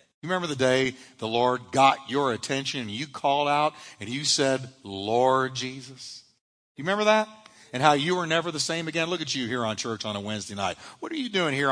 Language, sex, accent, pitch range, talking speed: English, male, American, 130-185 Hz, 225 wpm